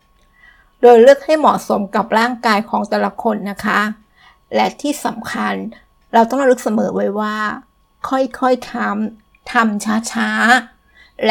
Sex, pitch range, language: female, 210-245 Hz, Thai